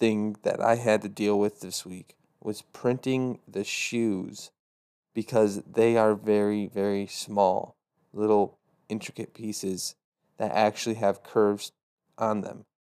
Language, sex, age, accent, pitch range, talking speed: English, male, 20-39, American, 100-115 Hz, 130 wpm